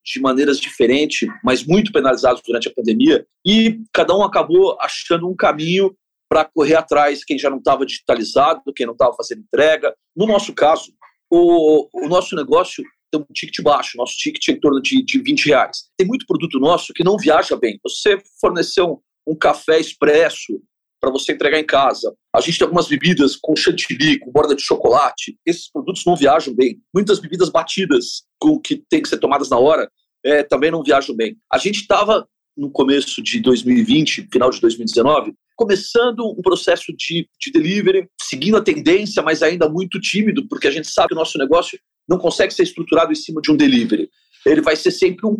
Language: Portuguese